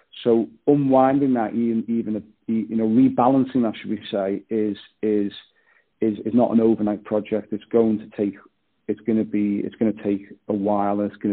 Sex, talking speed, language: male, 195 wpm, English